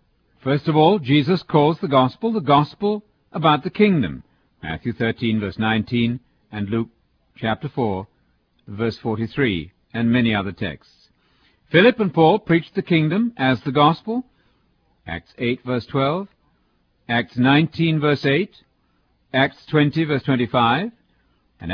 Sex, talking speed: male, 135 wpm